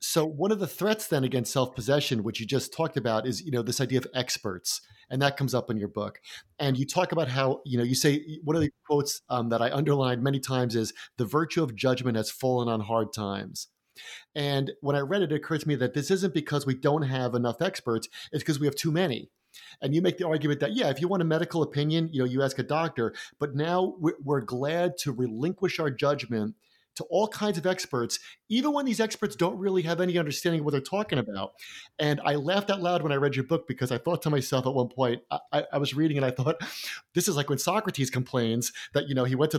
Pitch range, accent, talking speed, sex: 130-175 Hz, American, 245 wpm, male